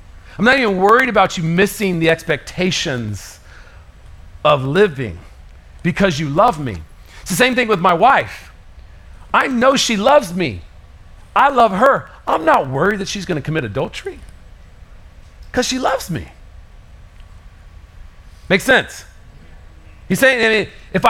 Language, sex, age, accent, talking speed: English, male, 40-59, American, 135 wpm